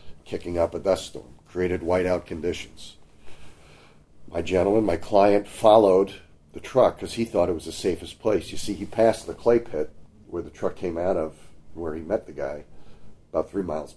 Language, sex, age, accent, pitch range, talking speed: English, male, 50-69, American, 75-95 Hz, 190 wpm